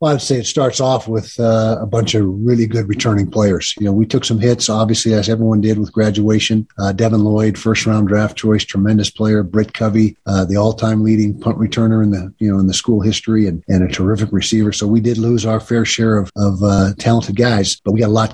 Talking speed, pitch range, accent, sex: 245 wpm, 100-110 Hz, American, male